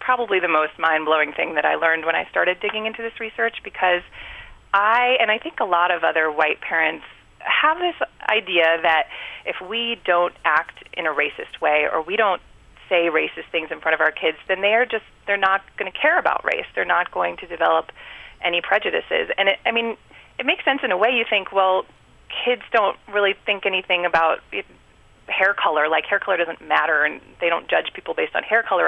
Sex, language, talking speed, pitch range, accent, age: female, English, 210 wpm, 165-225 Hz, American, 30-49